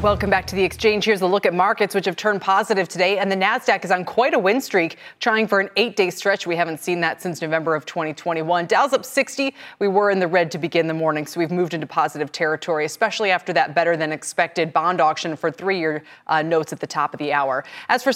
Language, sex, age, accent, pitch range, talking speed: English, female, 20-39, American, 165-215 Hz, 240 wpm